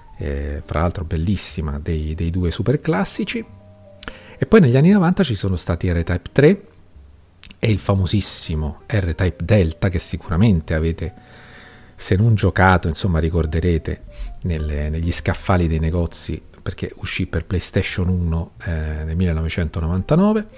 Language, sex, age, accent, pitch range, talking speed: Italian, male, 40-59, native, 85-110 Hz, 135 wpm